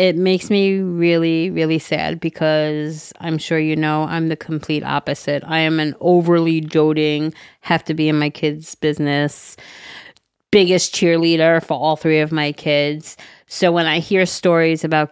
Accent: American